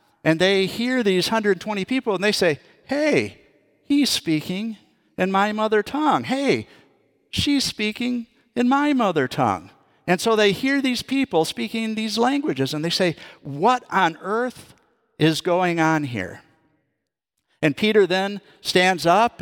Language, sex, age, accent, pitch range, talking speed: English, male, 50-69, American, 160-215 Hz, 145 wpm